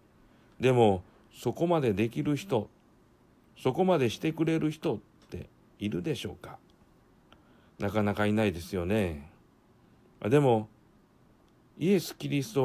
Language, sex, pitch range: Japanese, male, 110-150 Hz